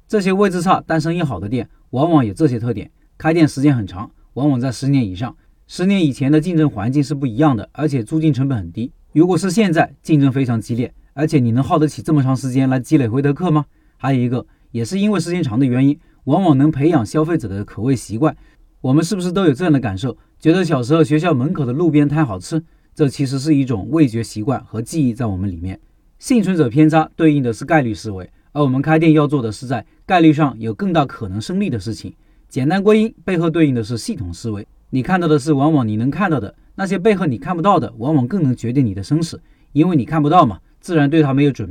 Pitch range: 120-160 Hz